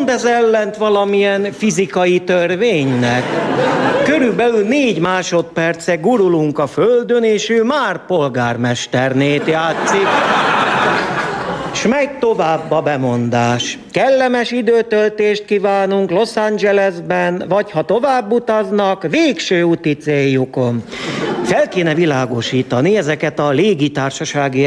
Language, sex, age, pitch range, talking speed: Hungarian, male, 50-69, 140-200 Hz, 95 wpm